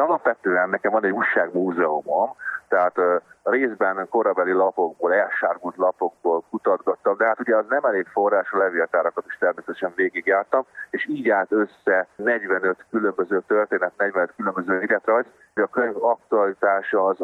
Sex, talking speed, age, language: male, 140 wpm, 30-49, Hungarian